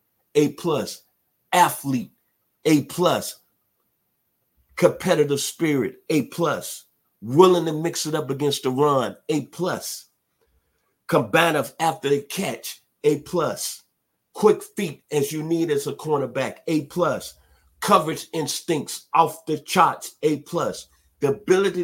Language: English